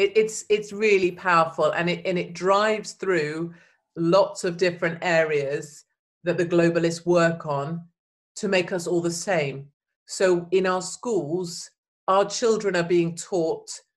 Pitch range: 170-210 Hz